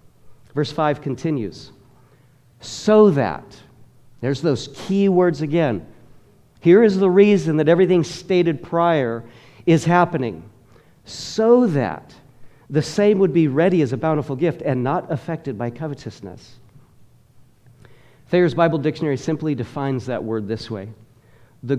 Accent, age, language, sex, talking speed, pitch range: American, 50-69, English, male, 125 wpm, 120-155 Hz